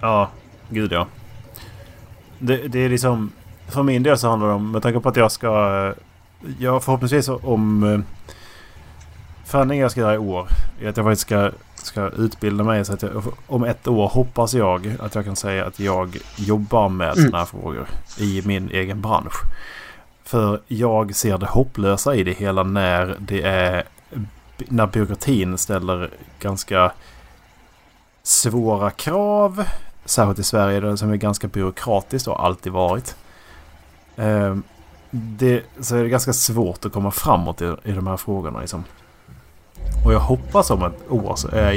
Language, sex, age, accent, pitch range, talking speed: Swedish, male, 30-49, Norwegian, 95-115 Hz, 160 wpm